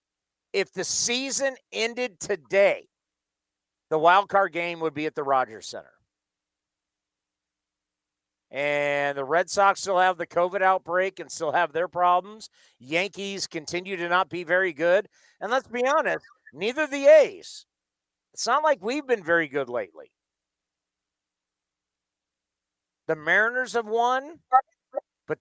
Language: English